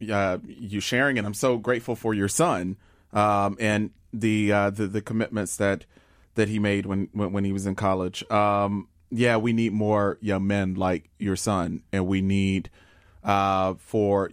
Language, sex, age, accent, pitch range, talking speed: English, male, 30-49, American, 95-110 Hz, 185 wpm